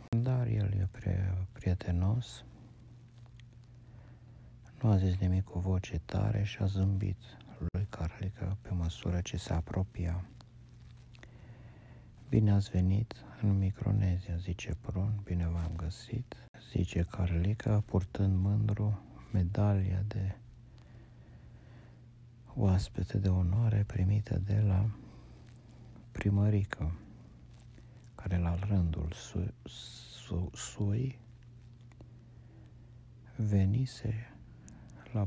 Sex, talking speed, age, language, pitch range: male, 90 wpm, 50-69, Romanian, 95-120 Hz